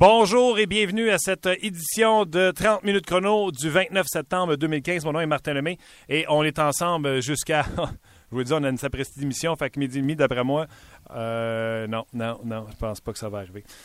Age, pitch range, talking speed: 30-49, 125-160 Hz, 220 wpm